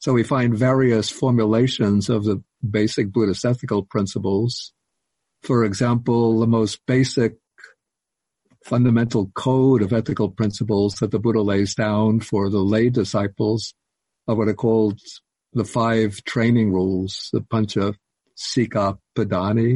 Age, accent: 50-69, American